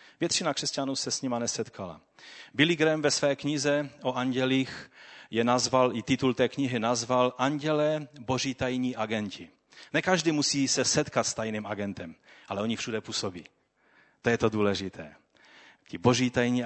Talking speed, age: 155 wpm, 30-49